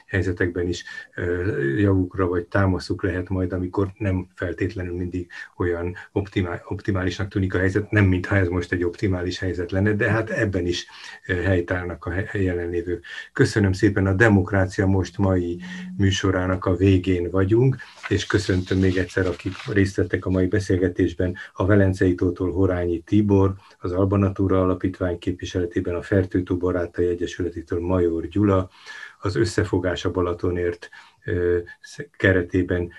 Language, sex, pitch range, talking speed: Hungarian, male, 90-100 Hz, 135 wpm